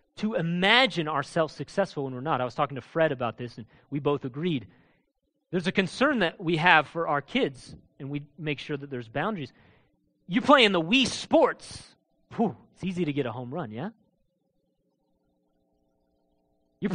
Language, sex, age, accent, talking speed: English, male, 30-49, American, 175 wpm